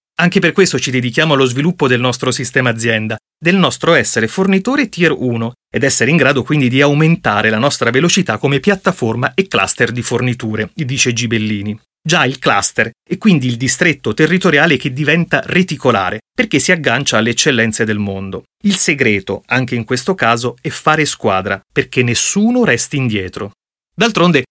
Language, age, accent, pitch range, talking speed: Italian, 30-49, native, 120-175 Hz, 165 wpm